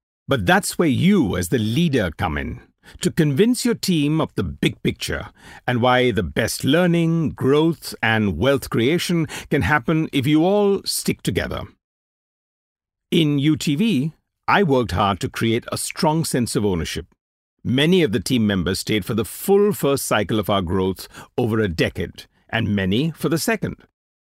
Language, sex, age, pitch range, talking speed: English, male, 60-79, 100-160 Hz, 165 wpm